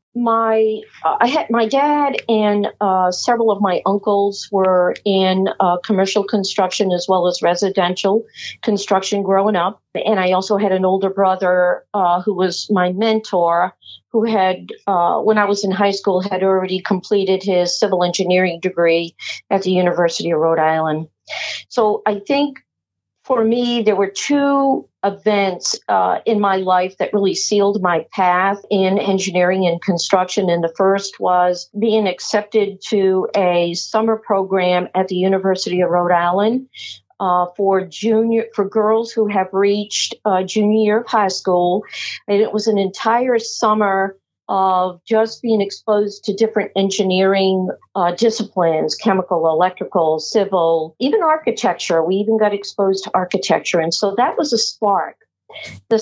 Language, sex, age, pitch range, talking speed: English, female, 40-59, 185-220 Hz, 155 wpm